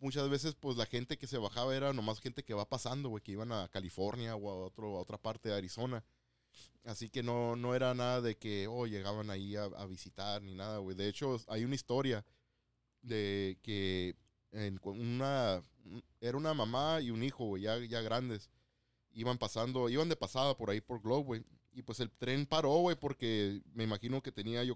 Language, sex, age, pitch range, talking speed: Spanish, male, 20-39, 105-125 Hz, 205 wpm